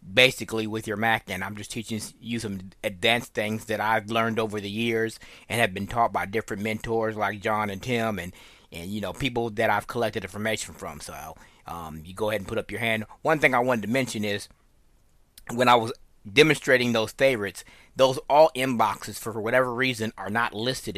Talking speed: 205 wpm